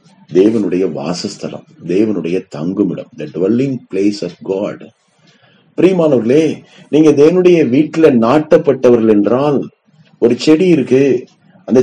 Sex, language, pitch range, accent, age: male, Tamil, 110-150 Hz, native, 30-49